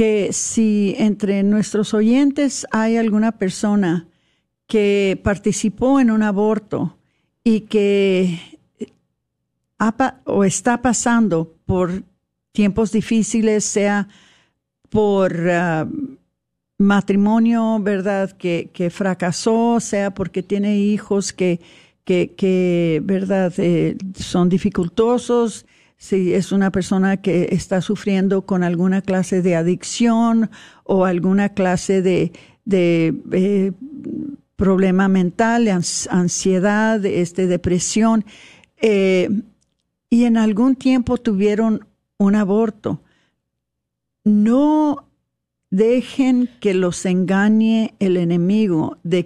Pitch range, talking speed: 185-220 Hz, 95 wpm